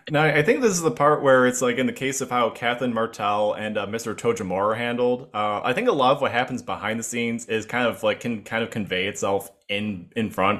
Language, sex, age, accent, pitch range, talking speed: English, male, 20-39, American, 105-130 Hz, 255 wpm